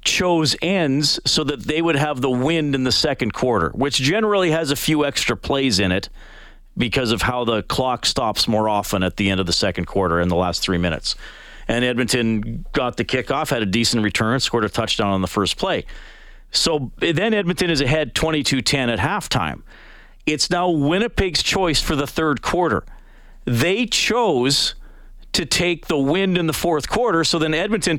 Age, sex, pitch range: 40-59, male, 120-175 Hz